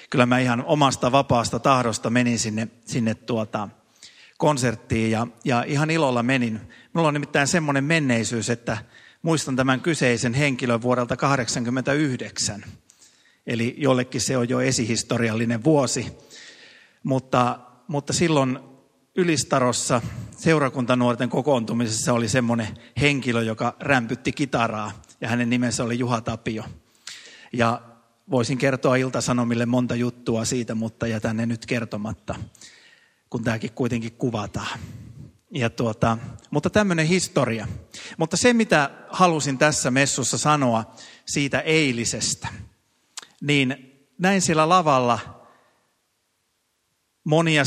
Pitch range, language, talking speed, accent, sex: 115-140 Hz, Finnish, 110 wpm, native, male